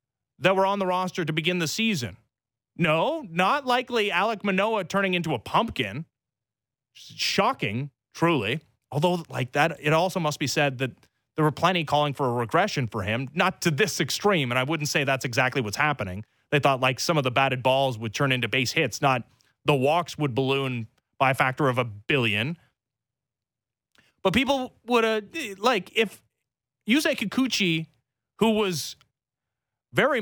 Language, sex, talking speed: English, male, 170 wpm